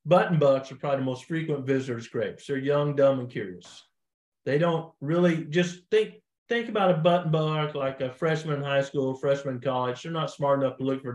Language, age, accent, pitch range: English, 50-69, American, 130-155 Hz